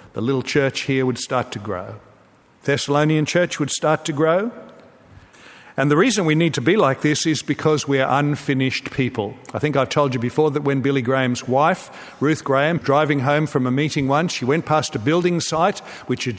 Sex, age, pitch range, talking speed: male, 50-69, 135-165 Hz, 210 wpm